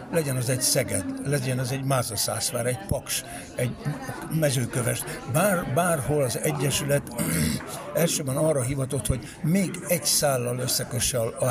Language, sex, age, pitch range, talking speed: Hungarian, male, 60-79, 110-135 Hz, 130 wpm